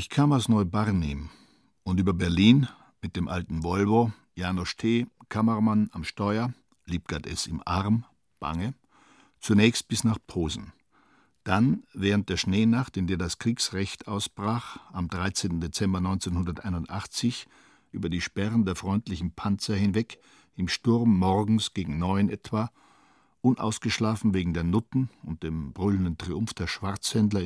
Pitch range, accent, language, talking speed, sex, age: 90-110 Hz, German, German, 135 wpm, male, 60-79